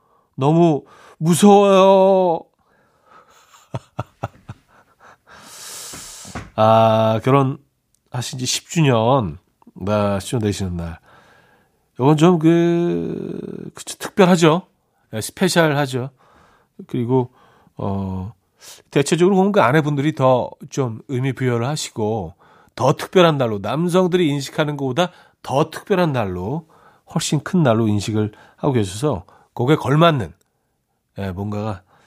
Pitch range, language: 110-165 Hz, Korean